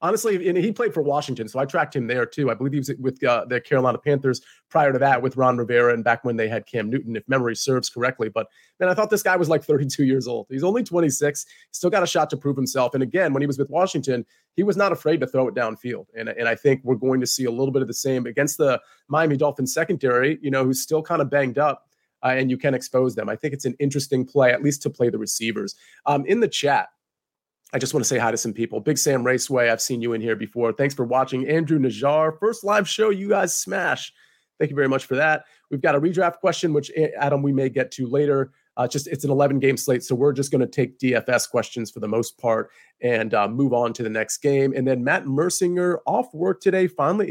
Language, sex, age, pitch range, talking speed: English, male, 30-49, 125-155 Hz, 260 wpm